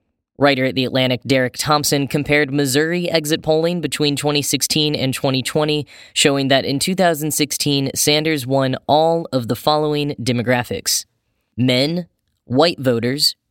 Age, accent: 10-29, American